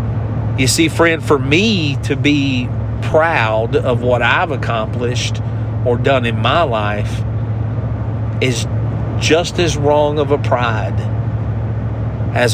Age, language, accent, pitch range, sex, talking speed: 50-69, English, American, 110-125 Hz, male, 120 wpm